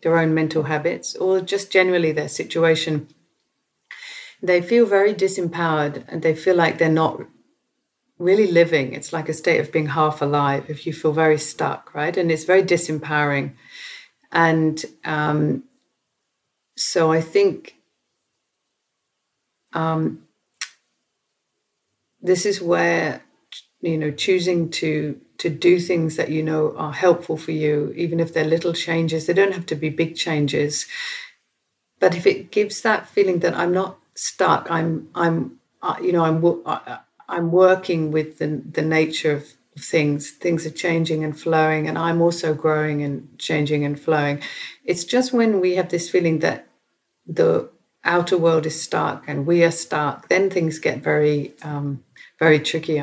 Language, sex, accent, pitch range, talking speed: English, female, British, 155-180 Hz, 150 wpm